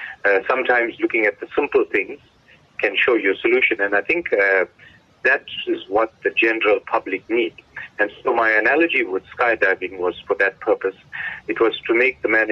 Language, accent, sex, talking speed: English, Indian, male, 185 wpm